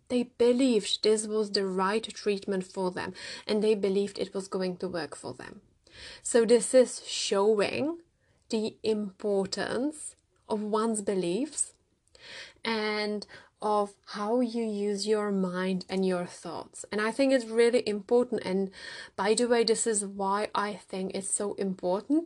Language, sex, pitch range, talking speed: English, female, 190-220 Hz, 150 wpm